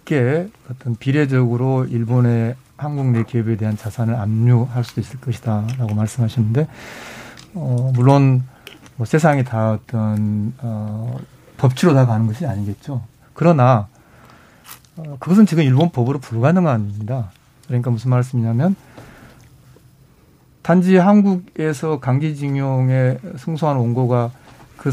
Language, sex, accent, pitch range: Korean, male, native, 125-155 Hz